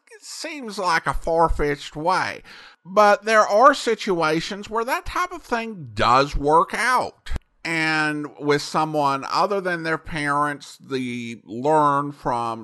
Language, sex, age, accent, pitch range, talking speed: English, male, 50-69, American, 125-175 Hz, 130 wpm